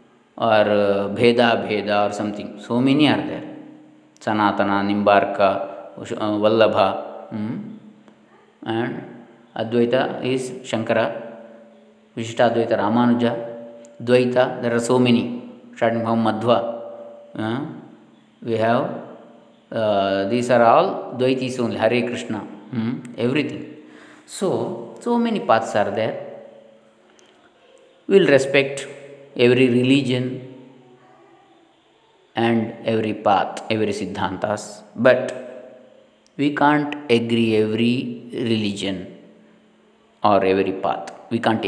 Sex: male